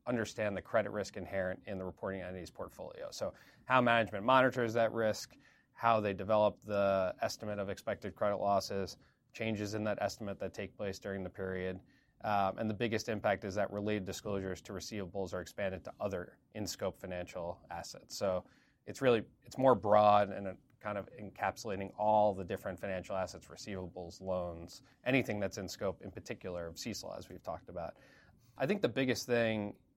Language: English